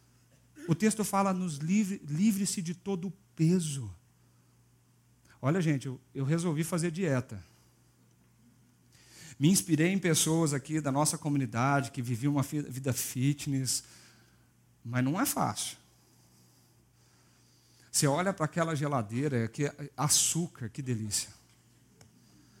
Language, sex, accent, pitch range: Portuguese, male, Brazilian, 125-180 Hz